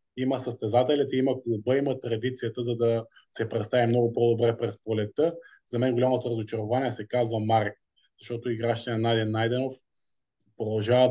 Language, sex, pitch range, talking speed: English, male, 115-125 Hz, 145 wpm